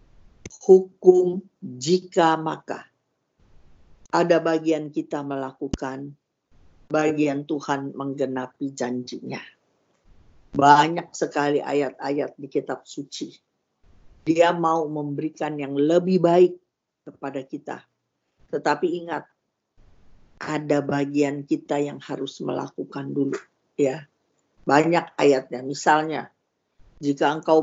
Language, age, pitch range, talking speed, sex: Indonesian, 50-69, 140-175 Hz, 85 wpm, female